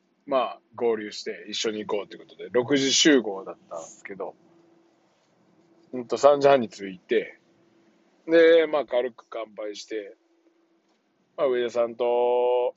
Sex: male